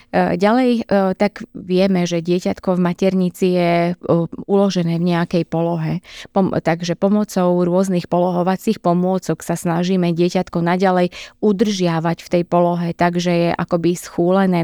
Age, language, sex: 20-39, Slovak, female